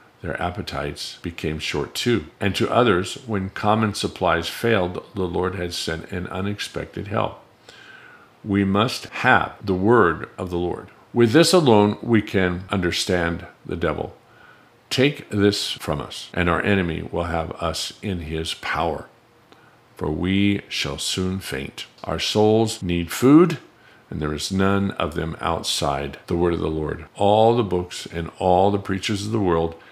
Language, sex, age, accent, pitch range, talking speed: English, male, 50-69, American, 85-105 Hz, 160 wpm